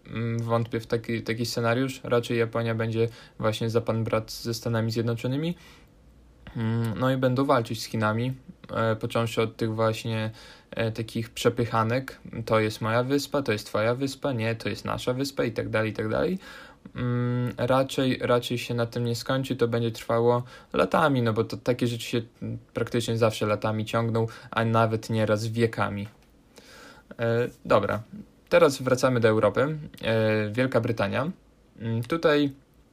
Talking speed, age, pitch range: 145 wpm, 20-39, 110-125 Hz